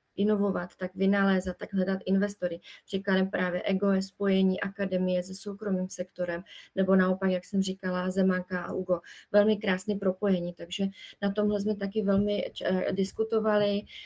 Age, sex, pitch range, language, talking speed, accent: 30-49, female, 185-200 Hz, Czech, 145 wpm, native